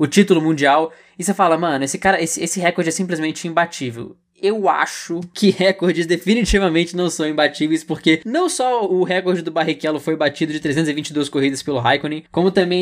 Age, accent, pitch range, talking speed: 20-39, Brazilian, 155-190 Hz, 185 wpm